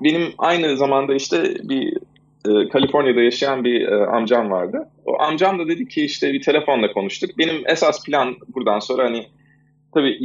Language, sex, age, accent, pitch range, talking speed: Turkish, male, 30-49, native, 115-155 Hz, 165 wpm